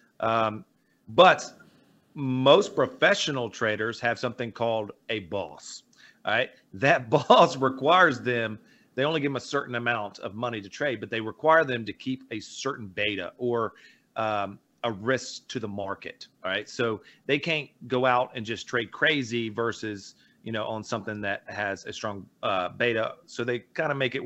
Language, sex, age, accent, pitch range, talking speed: English, male, 40-59, American, 110-135 Hz, 175 wpm